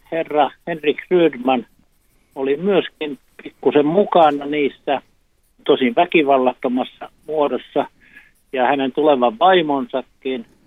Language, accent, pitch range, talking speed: Finnish, native, 130-155 Hz, 85 wpm